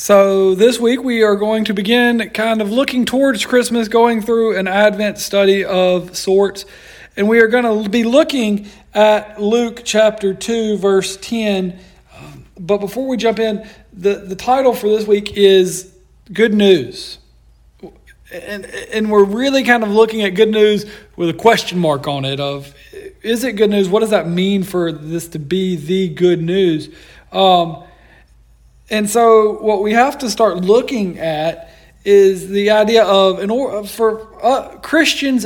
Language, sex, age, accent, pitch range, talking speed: English, male, 40-59, American, 185-230 Hz, 160 wpm